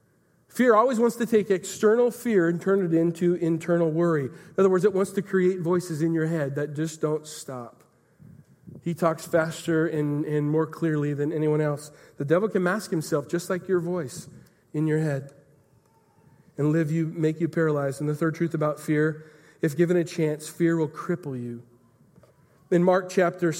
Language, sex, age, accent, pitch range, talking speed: English, male, 40-59, American, 160-190 Hz, 185 wpm